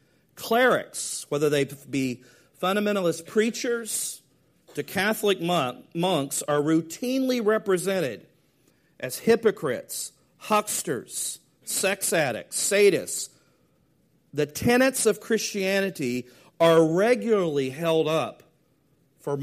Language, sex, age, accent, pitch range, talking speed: English, male, 50-69, American, 145-200 Hz, 85 wpm